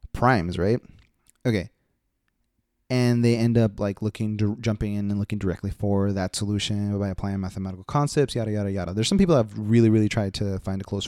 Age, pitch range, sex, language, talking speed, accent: 20-39, 100-120 Hz, male, English, 190 wpm, American